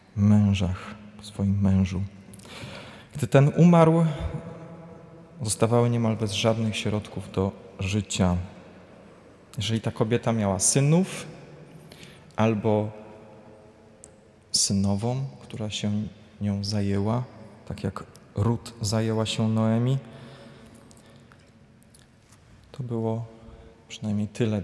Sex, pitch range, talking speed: male, 105-120 Hz, 85 wpm